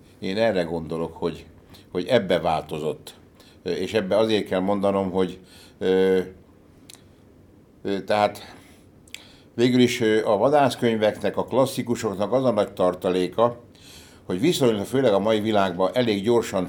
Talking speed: 115 wpm